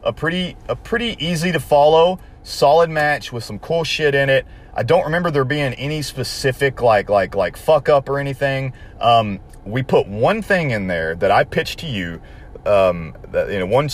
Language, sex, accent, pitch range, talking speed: English, male, American, 105-145 Hz, 200 wpm